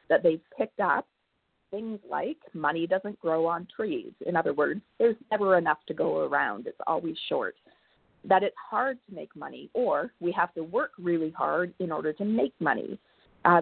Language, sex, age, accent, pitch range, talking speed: English, female, 30-49, American, 165-225 Hz, 185 wpm